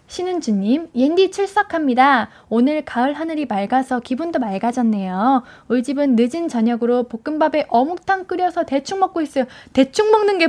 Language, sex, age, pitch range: Korean, female, 10-29, 230-320 Hz